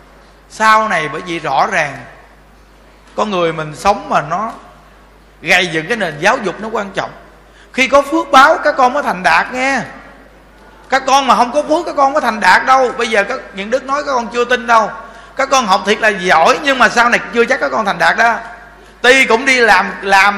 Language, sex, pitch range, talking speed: Vietnamese, male, 200-260 Hz, 225 wpm